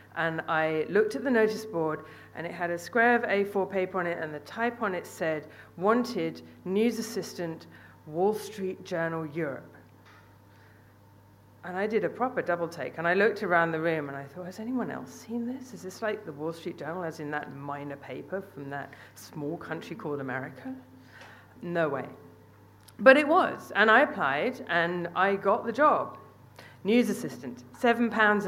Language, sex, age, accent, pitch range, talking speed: English, female, 40-59, British, 130-185 Hz, 180 wpm